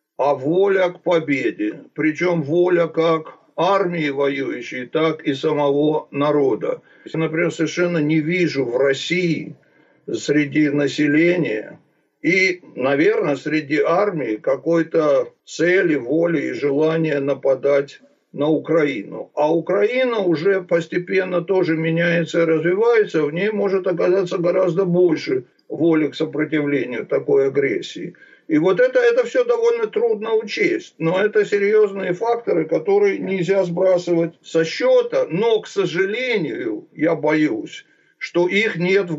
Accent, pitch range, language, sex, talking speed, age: native, 160-225 Hz, Russian, male, 120 wpm, 60-79